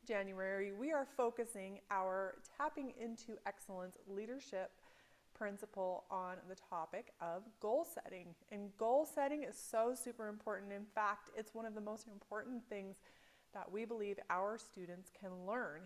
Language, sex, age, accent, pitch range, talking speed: English, female, 30-49, American, 190-230 Hz, 150 wpm